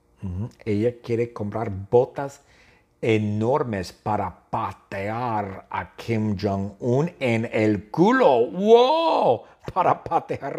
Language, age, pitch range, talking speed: English, 50-69, 100-140 Hz, 90 wpm